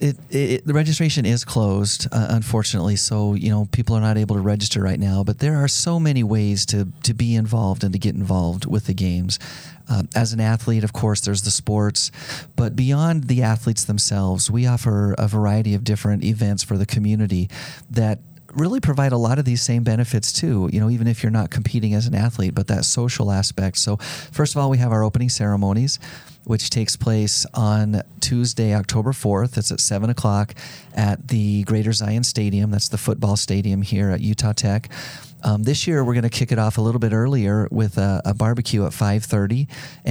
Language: English